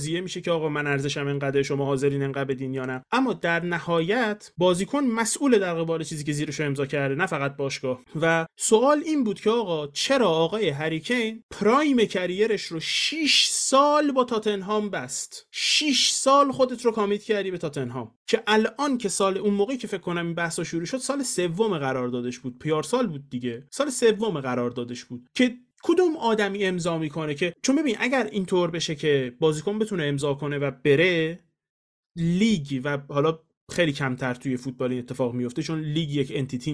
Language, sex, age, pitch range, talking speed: Persian, male, 30-49, 140-215 Hz, 175 wpm